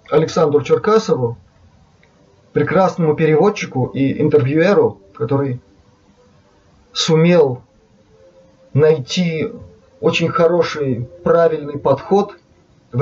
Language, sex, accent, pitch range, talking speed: Russian, male, native, 125-175 Hz, 65 wpm